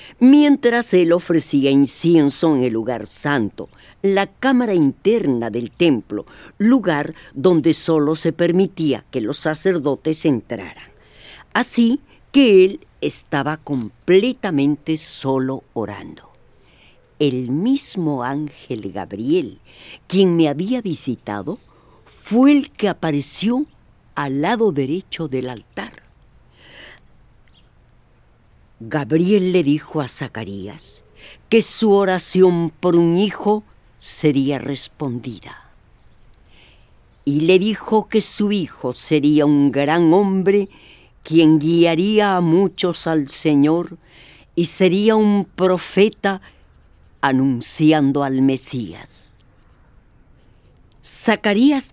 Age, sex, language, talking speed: 50-69, female, English, 95 wpm